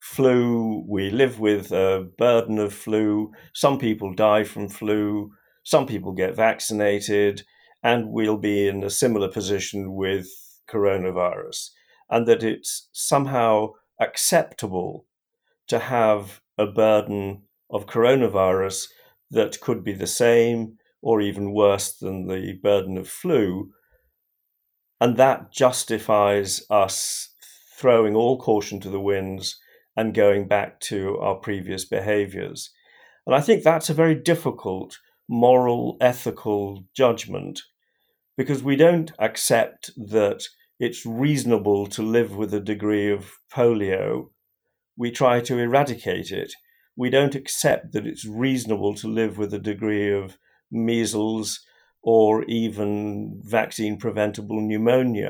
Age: 50-69